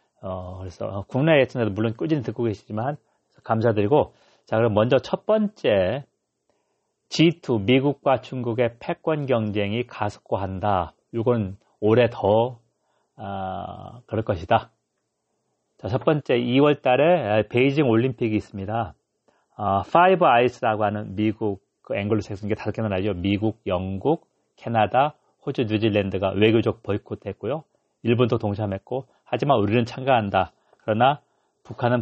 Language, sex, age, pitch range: Korean, male, 40-59, 105-135 Hz